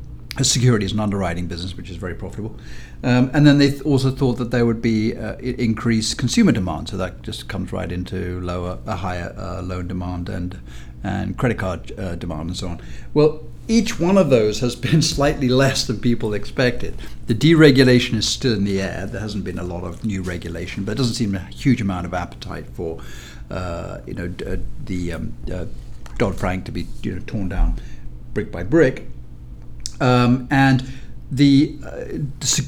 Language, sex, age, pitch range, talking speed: English, male, 60-79, 95-125 Hz, 195 wpm